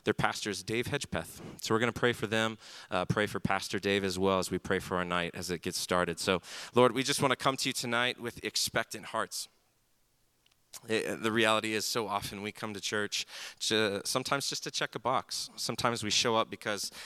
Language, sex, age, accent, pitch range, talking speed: English, male, 30-49, American, 100-115 Hz, 220 wpm